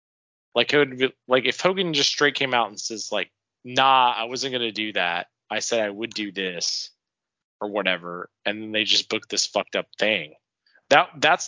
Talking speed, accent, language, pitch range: 205 wpm, American, English, 115-145 Hz